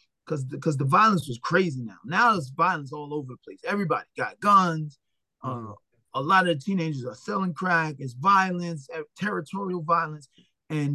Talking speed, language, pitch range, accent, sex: 175 wpm, English, 140-185 Hz, American, male